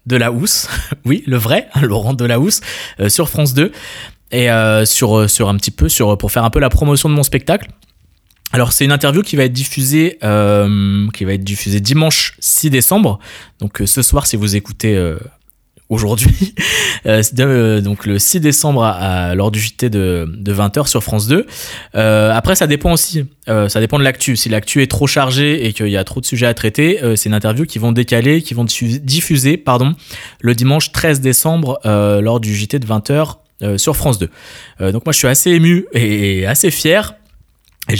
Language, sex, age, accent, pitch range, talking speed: French, male, 20-39, French, 105-145 Hz, 210 wpm